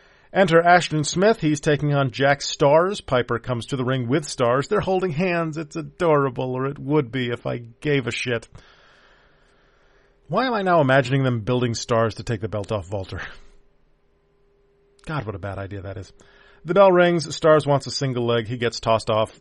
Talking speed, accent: 190 wpm, American